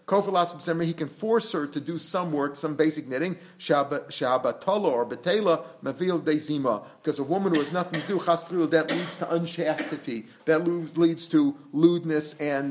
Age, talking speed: 40-59, 125 wpm